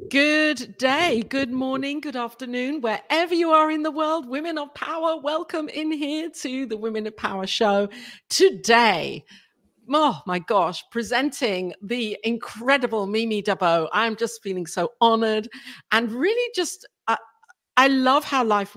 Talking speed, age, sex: 145 wpm, 50-69, female